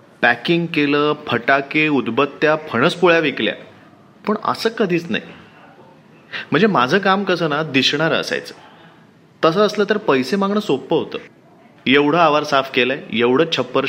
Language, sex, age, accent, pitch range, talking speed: Marathi, male, 30-49, native, 130-185 Hz, 135 wpm